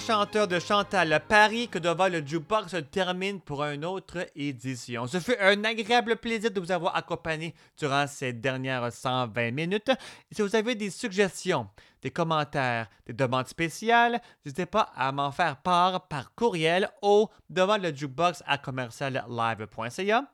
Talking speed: 155 wpm